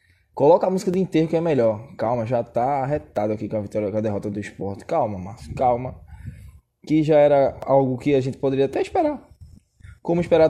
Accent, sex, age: Brazilian, male, 20-39